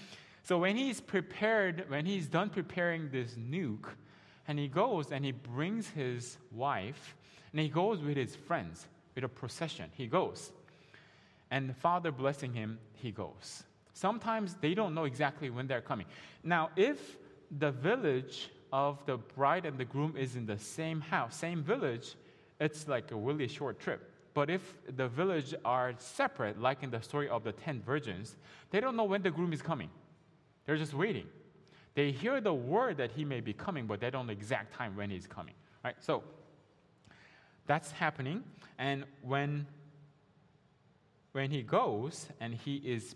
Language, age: English, 20-39